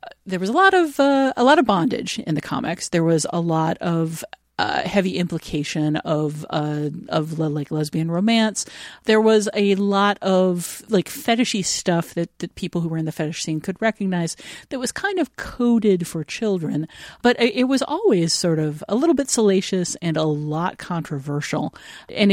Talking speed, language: 185 wpm, English